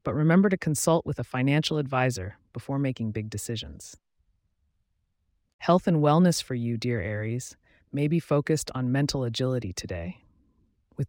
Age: 30-49